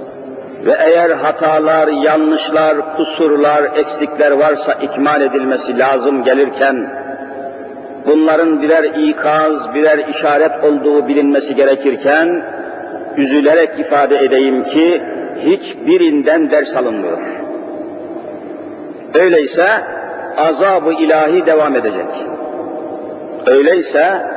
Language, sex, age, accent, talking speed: Turkish, male, 50-69, native, 80 wpm